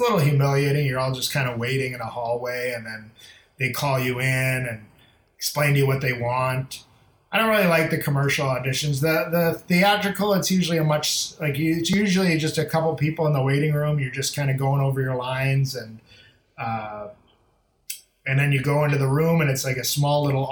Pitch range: 125-150 Hz